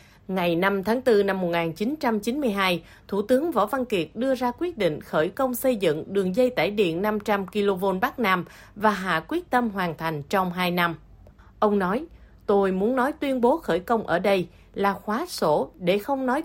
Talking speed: 195 wpm